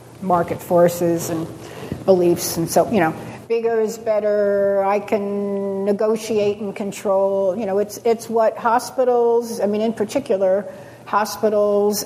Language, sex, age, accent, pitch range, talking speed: English, female, 50-69, American, 180-215 Hz, 135 wpm